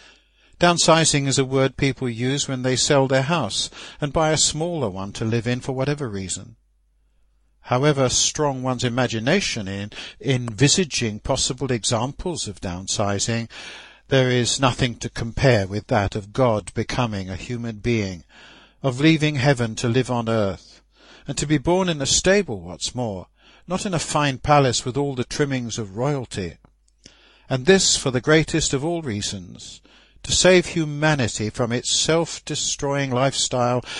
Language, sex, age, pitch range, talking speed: English, male, 60-79, 110-145 Hz, 155 wpm